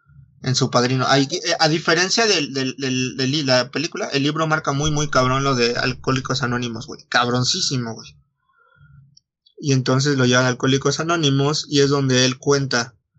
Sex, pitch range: male, 130-150 Hz